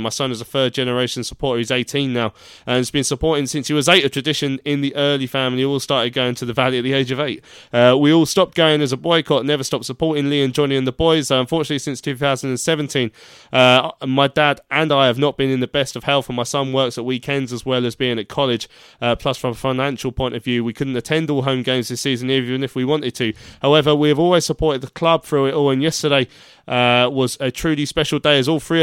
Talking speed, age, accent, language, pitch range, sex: 260 wpm, 20-39, British, English, 125-145 Hz, male